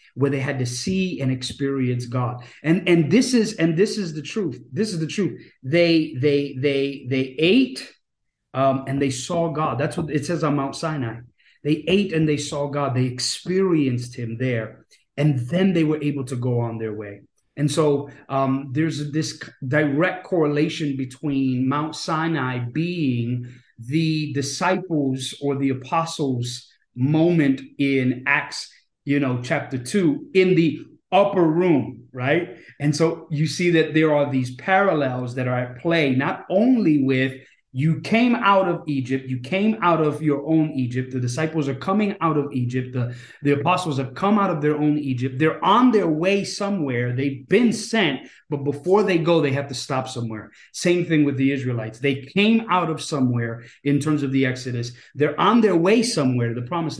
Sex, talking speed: male, 180 wpm